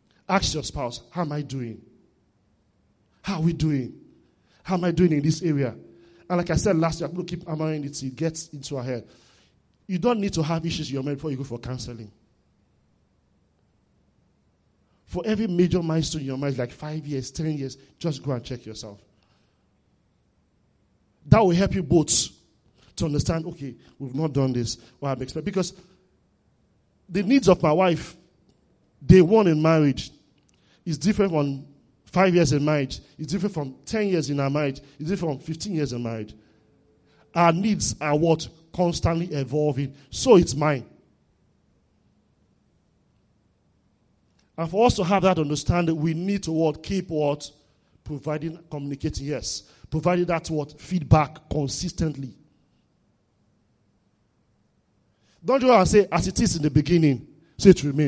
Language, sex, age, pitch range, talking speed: English, male, 40-59, 130-170 Hz, 160 wpm